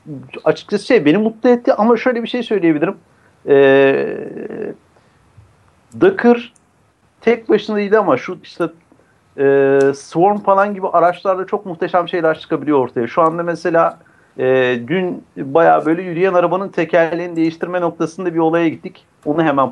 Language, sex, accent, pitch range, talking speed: Turkish, male, native, 150-200 Hz, 135 wpm